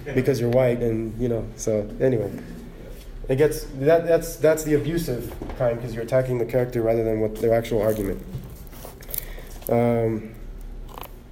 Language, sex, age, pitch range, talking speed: English, male, 20-39, 115-140 Hz, 150 wpm